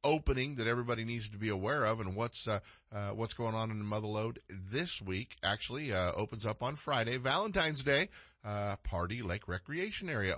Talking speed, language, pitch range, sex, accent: 195 wpm, English, 85-110 Hz, male, American